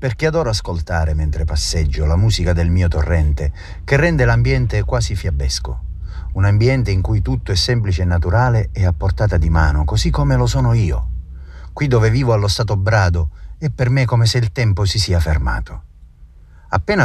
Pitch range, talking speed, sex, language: 80-105 Hz, 180 wpm, male, Italian